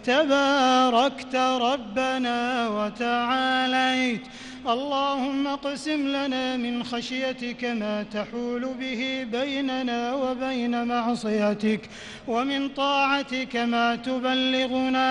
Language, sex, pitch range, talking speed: English, male, 245-280 Hz, 70 wpm